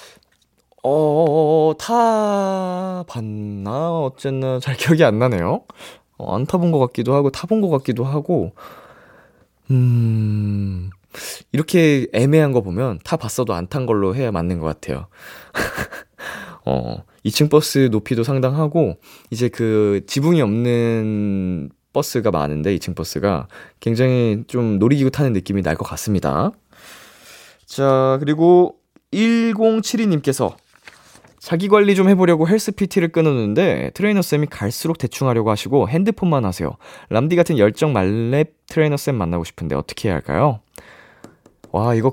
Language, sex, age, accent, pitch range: Korean, male, 20-39, native, 105-160 Hz